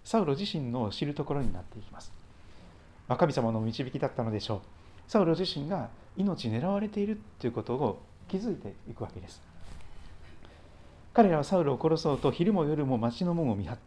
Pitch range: 100-135 Hz